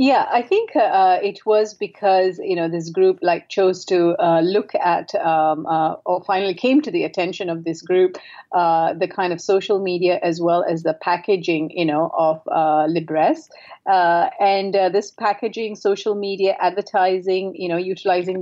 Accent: Indian